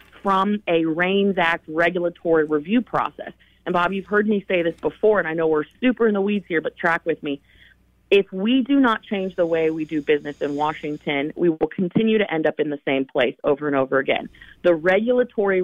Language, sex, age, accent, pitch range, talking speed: English, female, 30-49, American, 155-195 Hz, 215 wpm